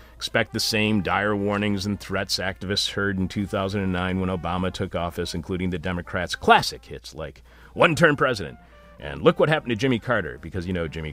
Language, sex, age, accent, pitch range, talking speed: English, male, 40-59, American, 80-125 Hz, 190 wpm